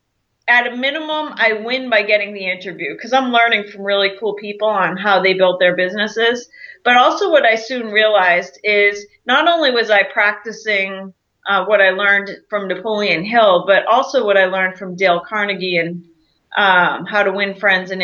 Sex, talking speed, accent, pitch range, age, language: female, 185 wpm, American, 190-225 Hz, 30-49, English